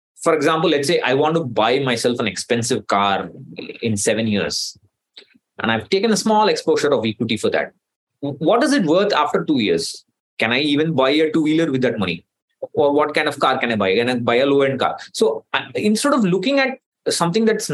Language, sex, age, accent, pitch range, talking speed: English, male, 20-39, Indian, 145-225 Hz, 215 wpm